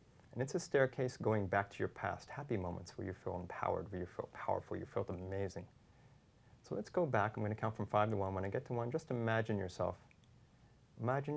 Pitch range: 100-120 Hz